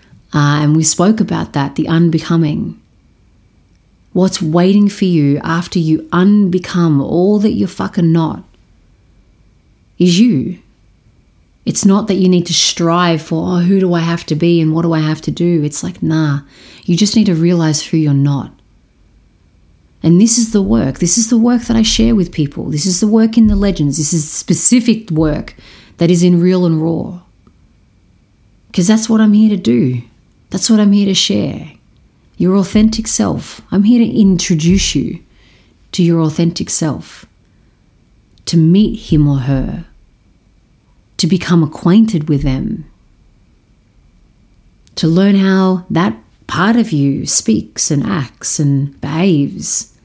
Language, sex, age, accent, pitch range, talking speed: English, female, 30-49, Australian, 150-195 Hz, 160 wpm